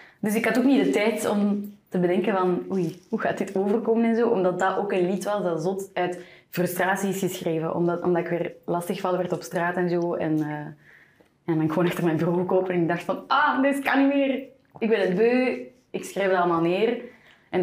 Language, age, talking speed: Dutch, 20-39, 230 wpm